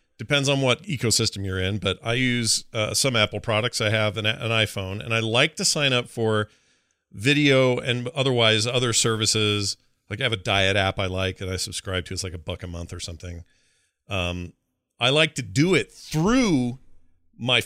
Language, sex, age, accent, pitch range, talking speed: English, male, 40-59, American, 105-135 Hz, 195 wpm